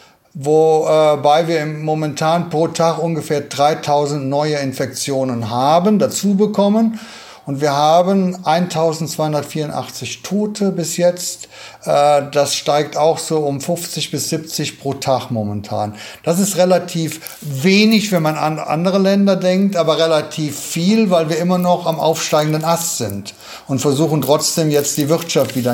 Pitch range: 140-175 Hz